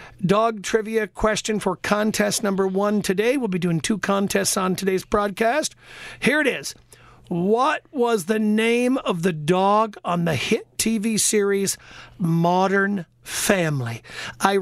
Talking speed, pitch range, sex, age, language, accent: 140 wpm, 180-225 Hz, male, 50-69, English, American